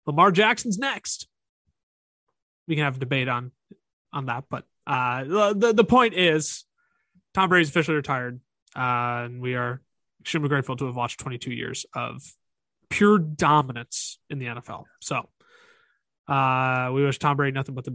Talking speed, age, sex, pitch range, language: 155 wpm, 20-39, male, 125-175 Hz, English